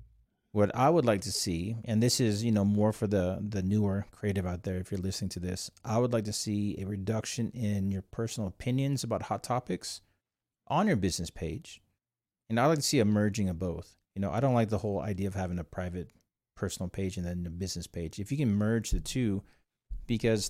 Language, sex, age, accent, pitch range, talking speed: English, male, 30-49, American, 95-115 Hz, 225 wpm